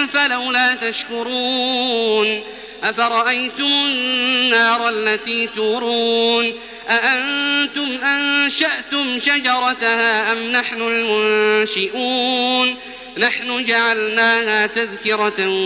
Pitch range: 225-280 Hz